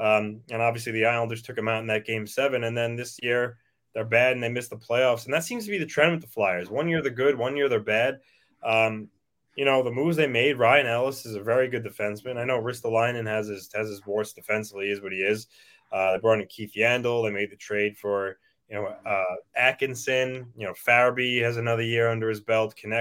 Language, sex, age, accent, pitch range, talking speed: English, male, 20-39, American, 110-140 Hz, 235 wpm